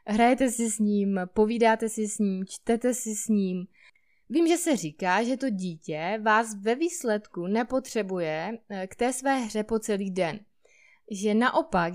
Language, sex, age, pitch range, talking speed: Czech, female, 20-39, 205-245 Hz, 160 wpm